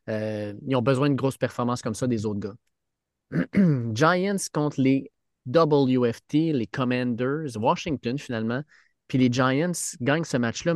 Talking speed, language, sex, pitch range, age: 145 wpm, French, male, 120-155 Hz, 30-49